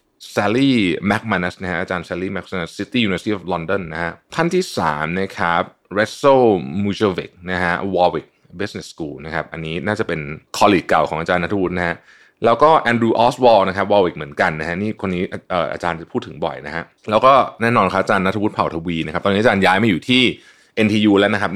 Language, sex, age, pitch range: Thai, male, 20-39, 85-105 Hz